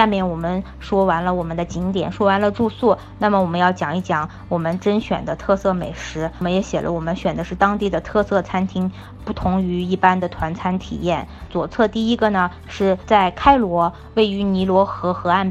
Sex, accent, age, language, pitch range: female, native, 20-39, Chinese, 180-205 Hz